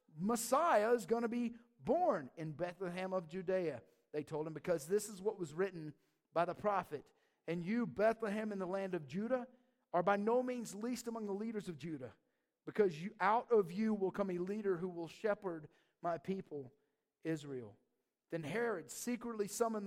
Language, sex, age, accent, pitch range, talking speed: English, male, 50-69, American, 180-235 Hz, 175 wpm